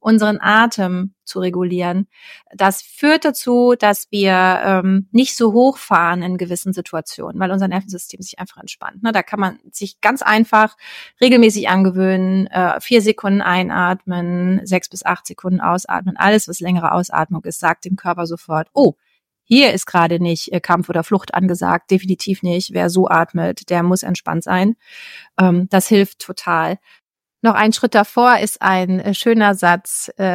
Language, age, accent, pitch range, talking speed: German, 30-49, German, 180-220 Hz, 155 wpm